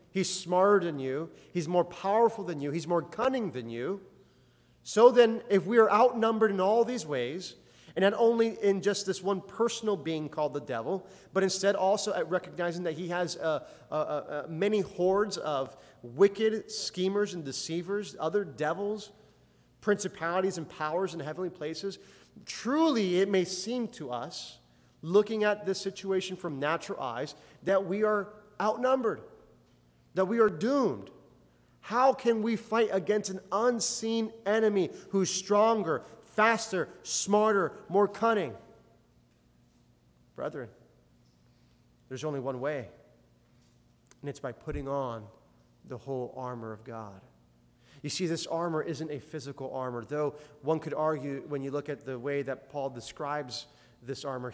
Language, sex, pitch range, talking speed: English, male, 140-205 Hz, 150 wpm